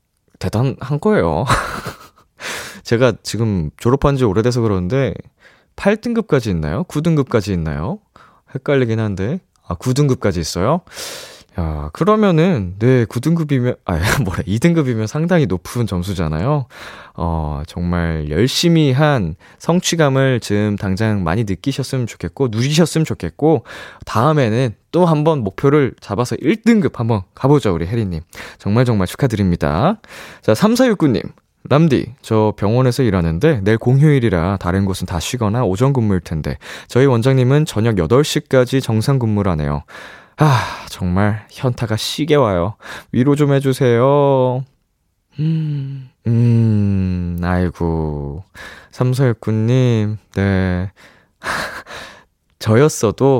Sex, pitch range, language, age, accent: male, 95-135 Hz, Korean, 20-39, native